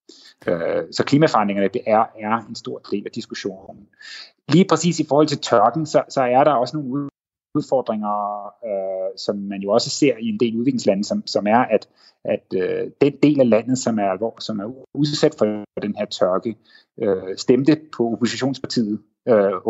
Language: Danish